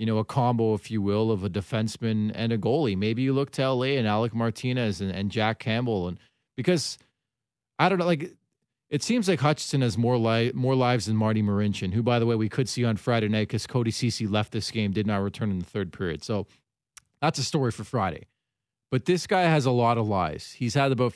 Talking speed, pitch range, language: 235 wpm, 105-130 Hz, English